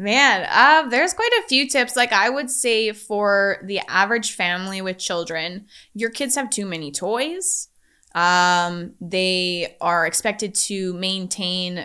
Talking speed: 145 wpm